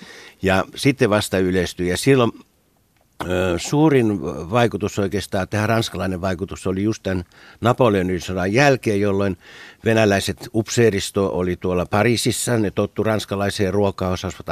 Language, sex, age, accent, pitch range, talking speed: Finnish, male, 60-79, native, 95-115 Hz, 120 wpm